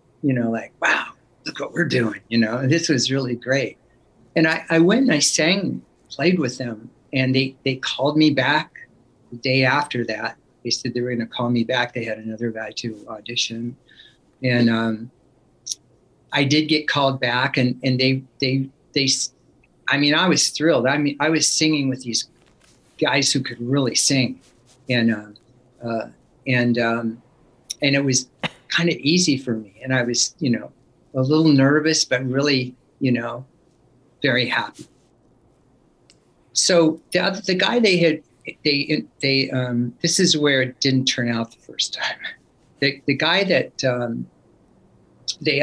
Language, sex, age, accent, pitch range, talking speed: English, male, 50-69, American, 120-150 Hz, 170 wpm